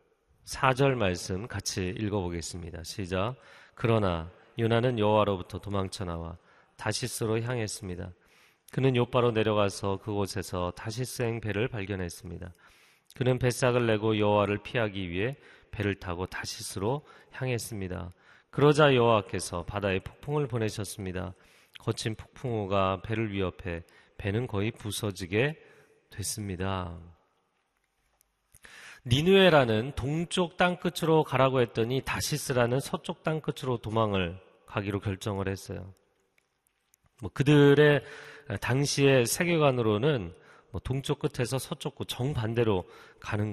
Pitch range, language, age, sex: 95-130 Hz, Korean, 30-49, male